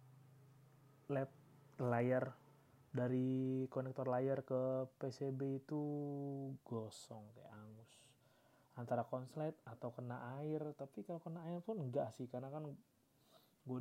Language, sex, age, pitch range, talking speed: Indonesian, male, 20-39, 125-150 Hz, 110 wpm